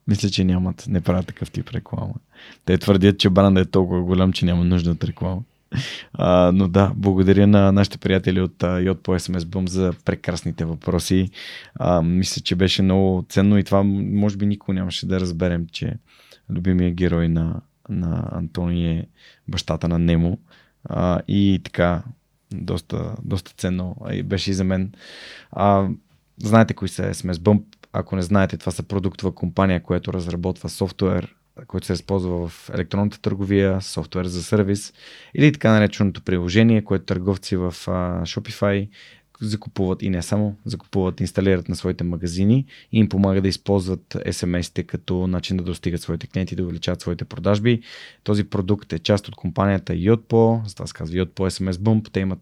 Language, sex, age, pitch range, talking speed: Bulgarian, male, 20-39, 90-105 Hz, 165 wpm